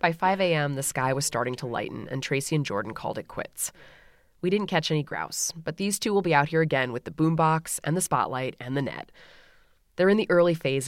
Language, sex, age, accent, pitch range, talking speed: English, female, 20-39, American, 130-185 Hz, 235 wpm